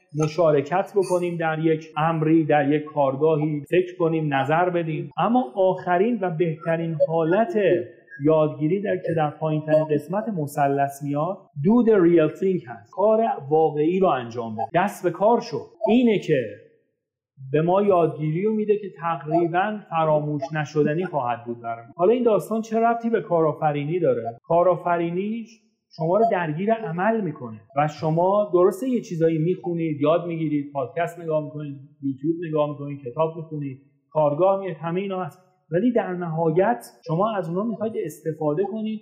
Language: Persian